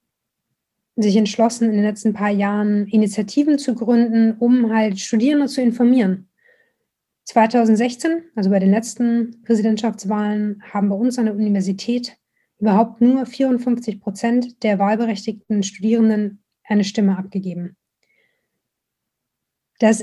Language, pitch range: German, 200-230 Hz